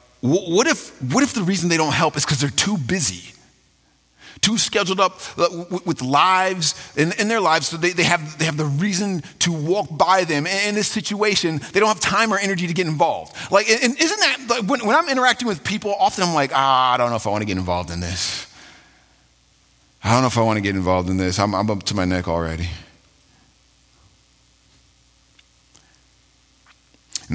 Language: English